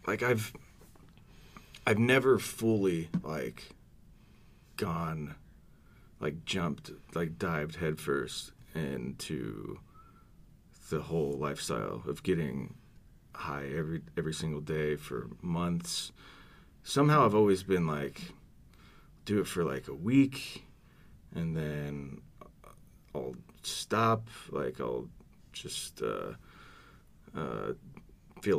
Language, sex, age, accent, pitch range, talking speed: English, male, 30-49, American, 80-110 Hz, 95 wpm